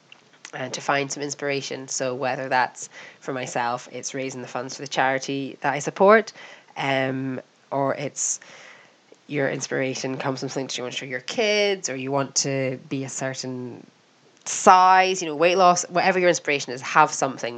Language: English